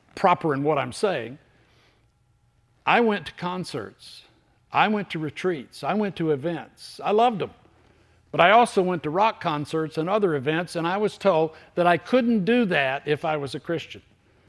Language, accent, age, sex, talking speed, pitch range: English, American, 60-79, male, 180 wpm, 135-175 Hz